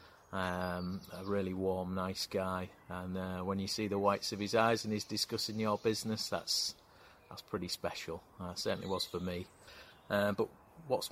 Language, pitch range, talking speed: English, 95-105 Hz, 185 wpm